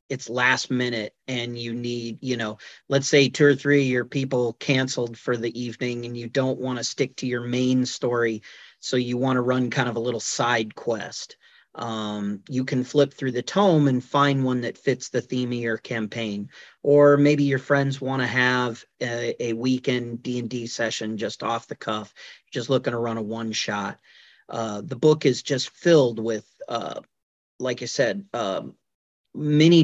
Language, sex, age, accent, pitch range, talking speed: English, male, 40-59, American, 115-135 Hz, 190 wpm